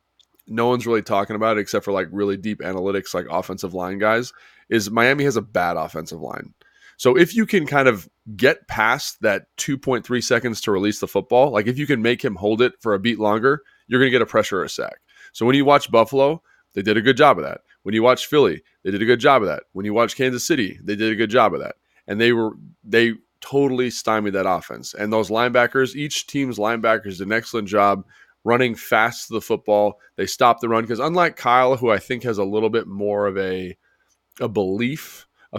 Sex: male